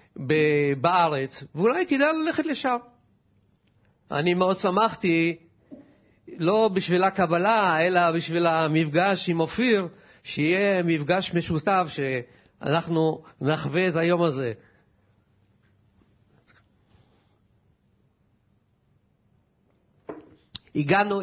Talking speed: 70 wpm